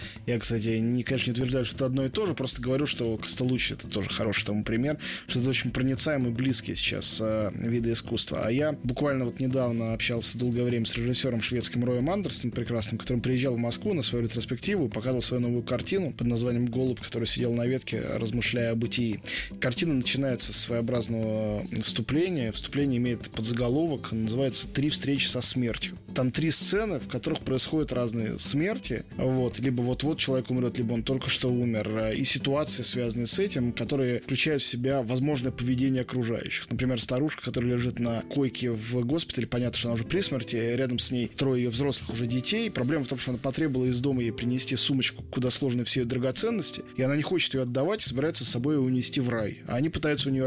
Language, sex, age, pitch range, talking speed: Russian, male, 20-39, 120-140 Hz, 195 wpm